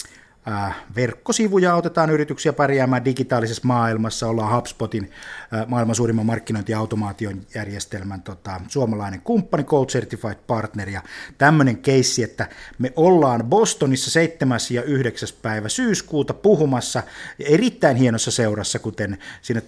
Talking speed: 110 wpm